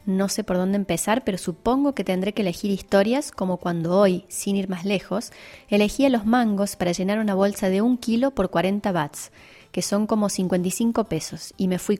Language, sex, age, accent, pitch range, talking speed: Spanish, female, 20-39, Argentinian, 180-220 Hz, 205 wpm